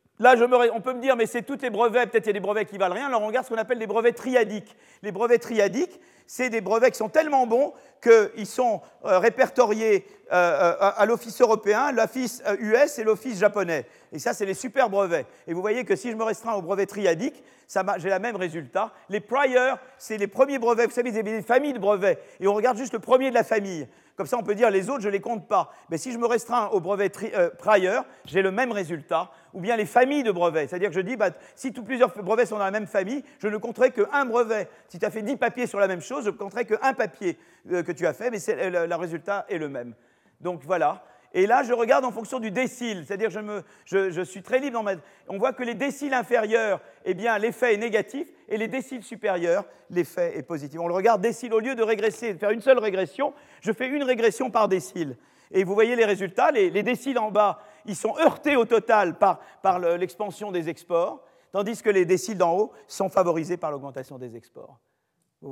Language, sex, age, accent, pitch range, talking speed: French, male, 50-69, French, 190-245 Hz, 250 wpm